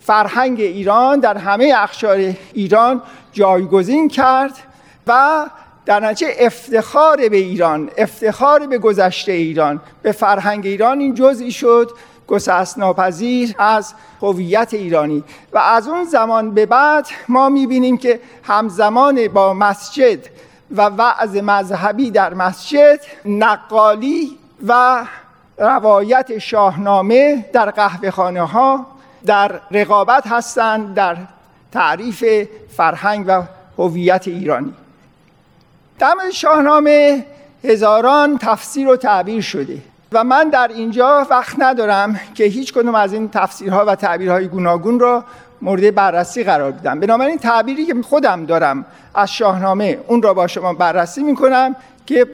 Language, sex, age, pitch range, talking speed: Persian, male, 50-69, 200-260 Hz, 120 wpm